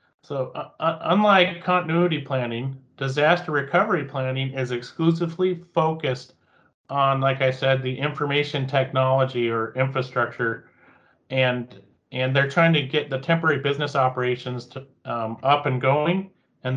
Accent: American